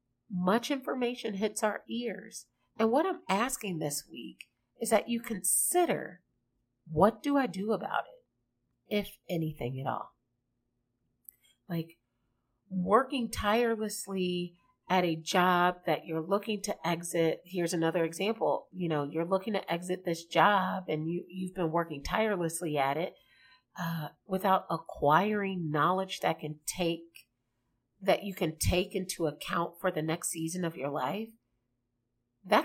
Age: 40-59